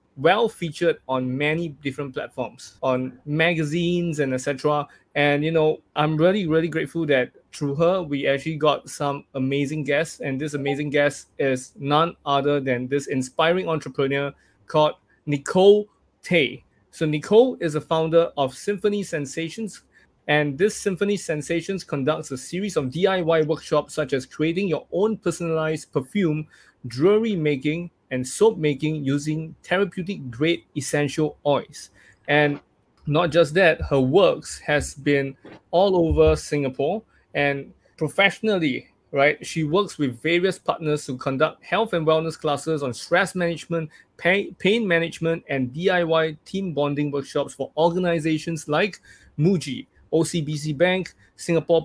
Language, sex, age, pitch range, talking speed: English, male, 20-39, 145-170 Hz, 135 wpm